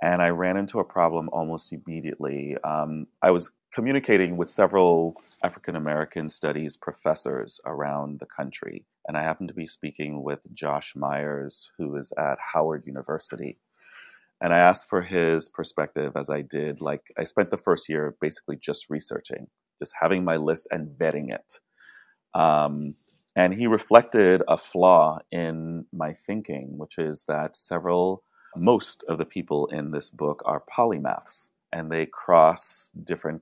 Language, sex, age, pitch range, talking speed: English, male, 30-49, 75-90 Hz, 155 wpm